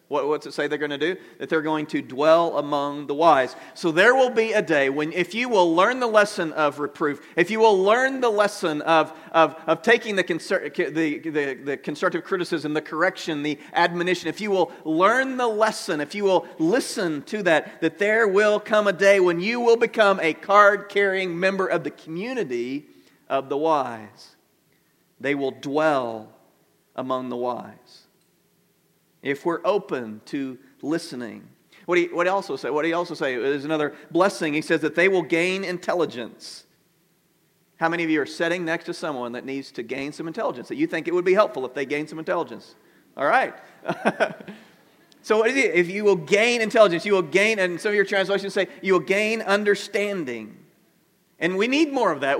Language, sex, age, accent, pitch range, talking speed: English, male, 40-59, American, 155-205 Hz, 195 wpm